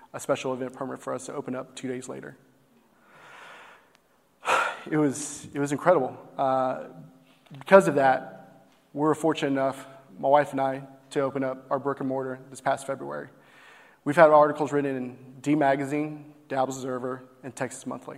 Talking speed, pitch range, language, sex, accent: 170 wpm, 130-165 Hz, English, male, American